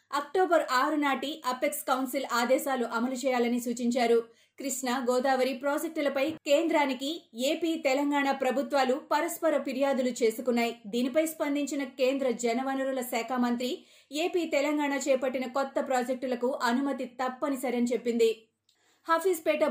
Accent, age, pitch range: native, 30-49, 240-285 Hz